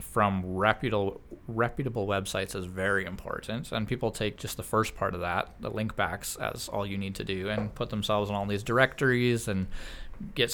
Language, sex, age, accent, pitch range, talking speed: English, male, 20-39, American, 100-115 Hz, 195 wpm